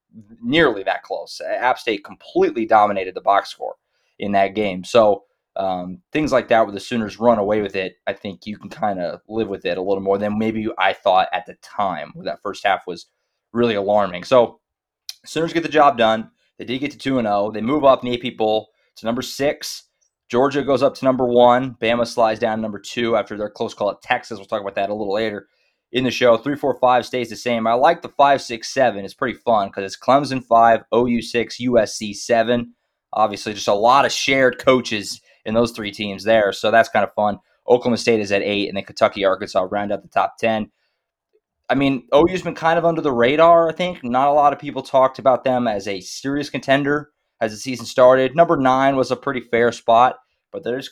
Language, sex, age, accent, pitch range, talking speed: English, male, 20-39, American, 110-140 Hz, 215 wpm